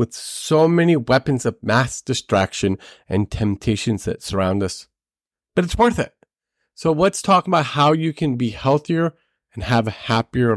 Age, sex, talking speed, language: 40-59, male, 165 wpm, English